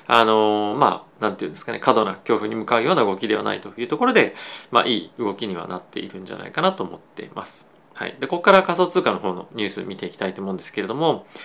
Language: Japanese